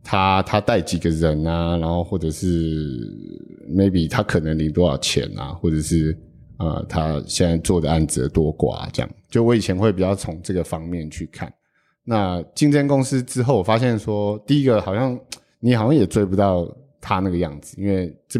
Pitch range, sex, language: 80-105 Hz, male, Chinese